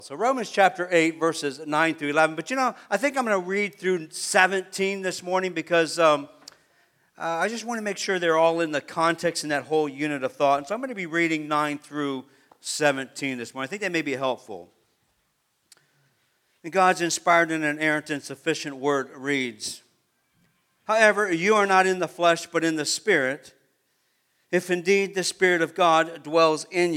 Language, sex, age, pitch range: English, male, 50-69, 150-190 Hz